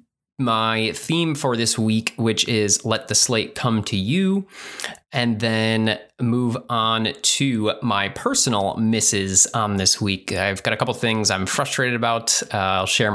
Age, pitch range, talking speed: 20-39, 105-130 Hz, 165 wpm